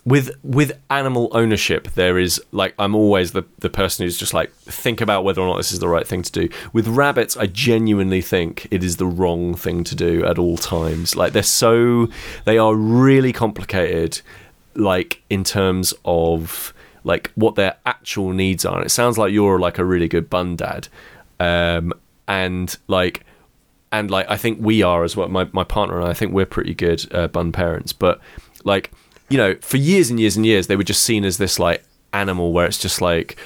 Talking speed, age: 210 wpm, 30-49